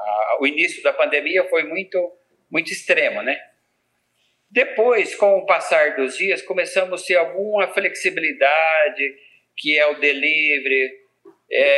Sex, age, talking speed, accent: male, 50-69, 125 wpm, Brazilian